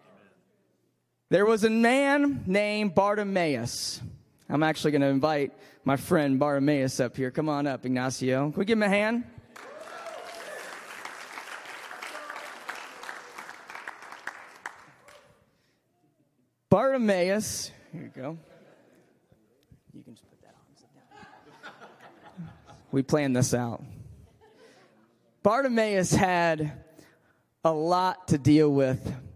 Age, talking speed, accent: 20-39, 100 wpm, American